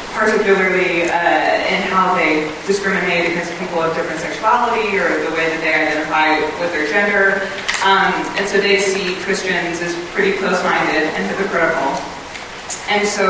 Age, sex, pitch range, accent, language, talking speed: 20-39, female, 165-195 Hz, American, English, 150 wpm